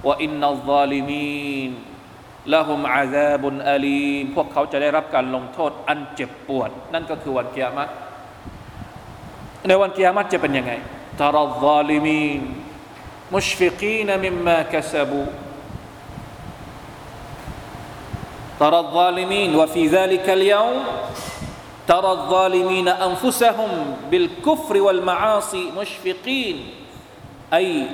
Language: Thai